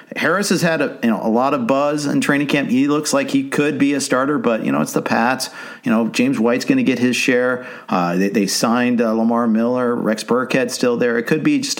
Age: 50-69